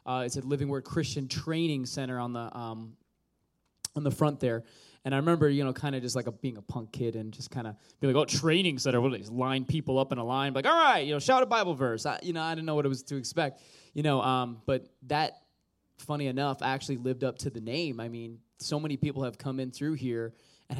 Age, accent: 20-39, American